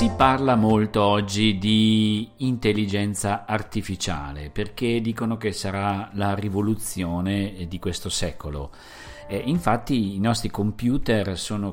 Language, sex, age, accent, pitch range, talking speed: Italian, male, 50-69, native, 90-110 Hz, 115 wpm